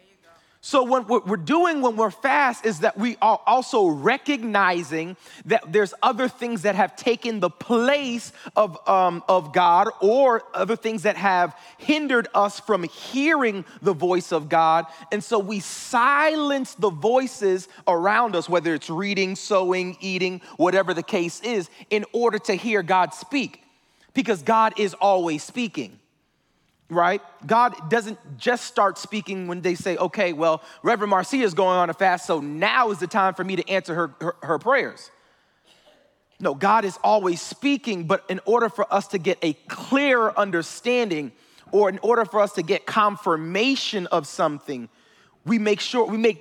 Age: 30-49